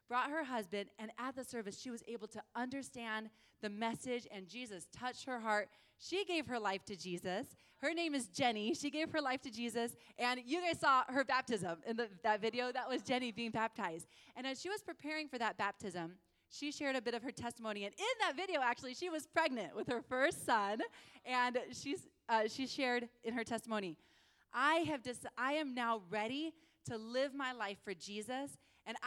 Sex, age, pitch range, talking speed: female, 20-39, 215-270 Hz, 205 wpm